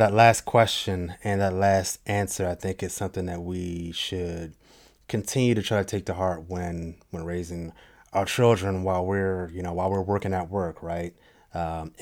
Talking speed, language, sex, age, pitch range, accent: 185 wpm, English, male, 20-39, 90-110 Hz, American